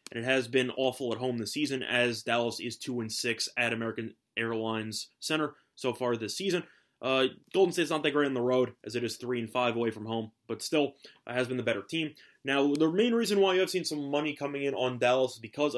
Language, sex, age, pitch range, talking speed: English, male, 20-39, 120-145 Hz, 245 wpm